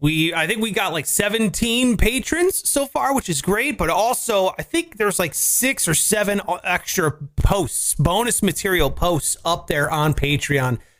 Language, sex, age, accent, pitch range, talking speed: English, male, 30-49, American, 130-185 Hz, 170 wpm